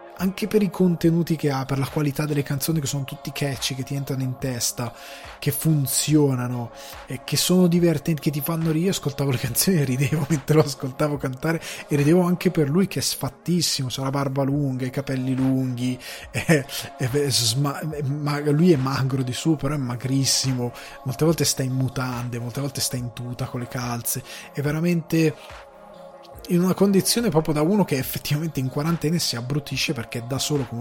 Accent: native